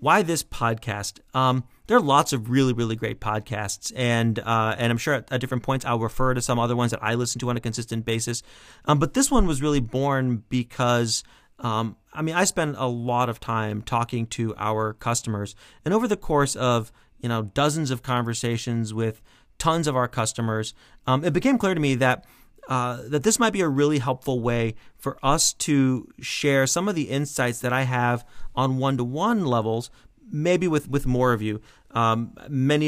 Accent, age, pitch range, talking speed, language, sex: American, 30-49, 115-145 Hz, 205 wpm, English, male